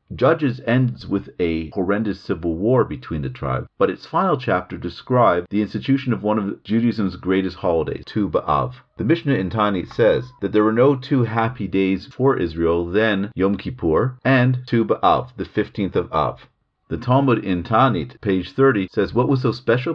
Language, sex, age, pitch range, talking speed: English, male, 40-59, 95-130 Hz, 180 wpm